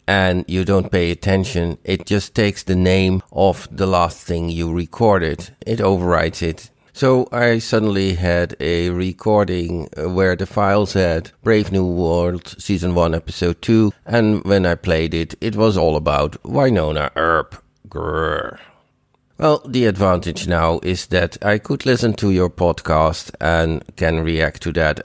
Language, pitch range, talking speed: English, 85-105 Hz, 155 wpm